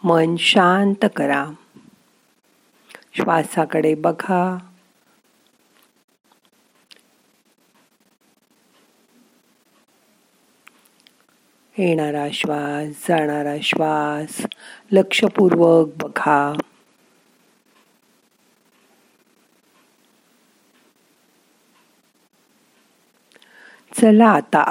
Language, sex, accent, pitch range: Marathi, female, native, 160-220 Hz